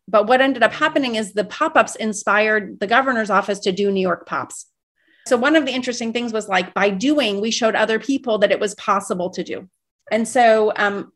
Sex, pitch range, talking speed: female, 190-230 Hz, 215 wpm